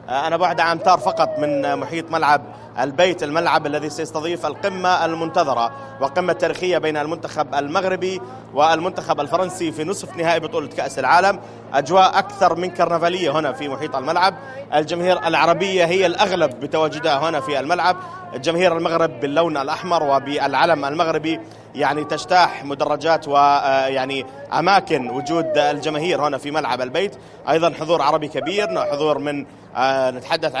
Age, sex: 30-49, male